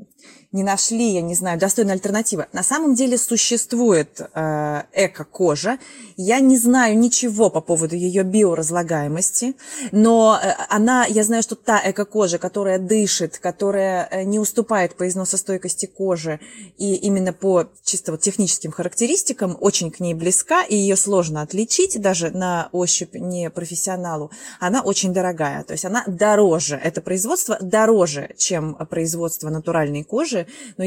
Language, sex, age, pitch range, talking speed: Russian, female, 20-39, 180-230 Hz, 140 wpm